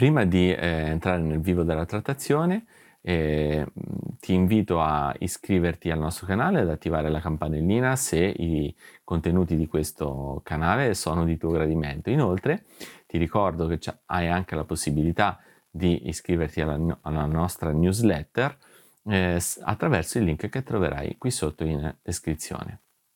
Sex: male